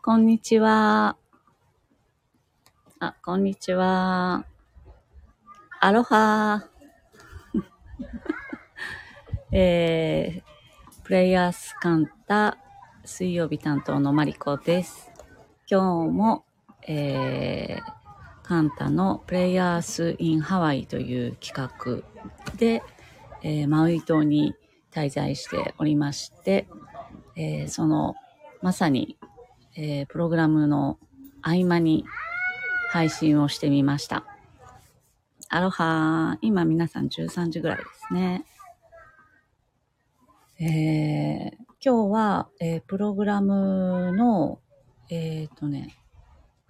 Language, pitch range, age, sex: Japanese, 150-205 Hz, 30-49, female